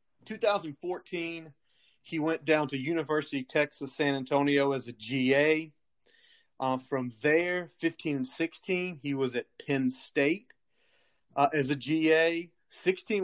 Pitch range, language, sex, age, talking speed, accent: 135-160 Hz, English, male, 30-49, 125 wpm, American